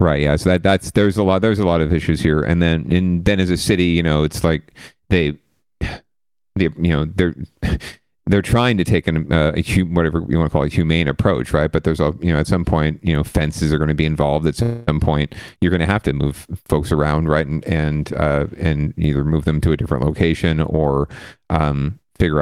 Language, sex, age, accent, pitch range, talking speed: English, male, 40-59, American, 75-85 Hz, 235 wpm